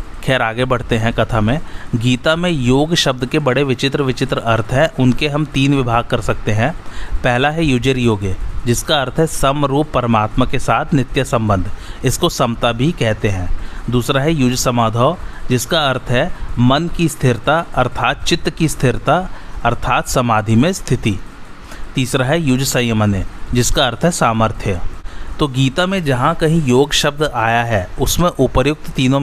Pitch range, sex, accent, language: 115-145 Hz, male, native, Hindi